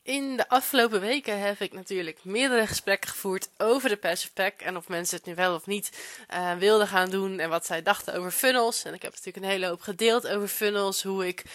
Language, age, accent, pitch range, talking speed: Dutch, 20-39, Dutch, 185-220 Hz, 230 wpm